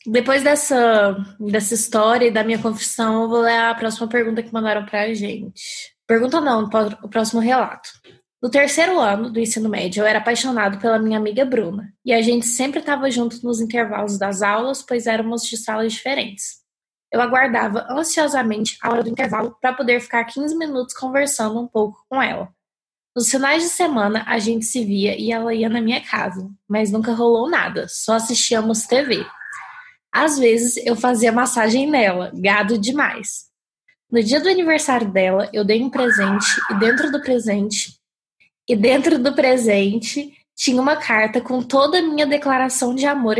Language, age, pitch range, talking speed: Portuguese, 10-29, 220-260 Hz, 175 wpm